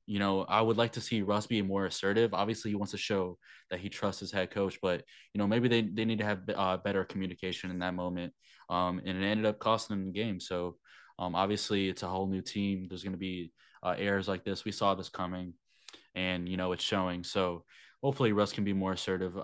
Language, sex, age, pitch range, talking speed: English, male, 20-39, 95-105 Hz, 240 wpm